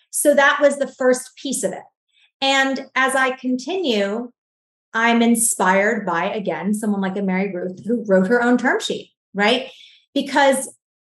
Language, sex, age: English, female, 30-49